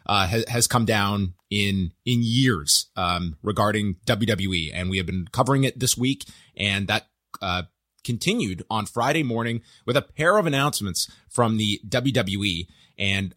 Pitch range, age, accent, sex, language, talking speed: 105-135 Hz, 30-49, American, male, English, 155 wpm